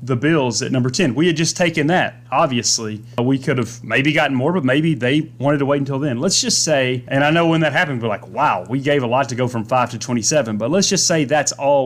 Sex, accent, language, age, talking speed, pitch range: male, American, English, 30-49, 270 wpm, 125-155 Hz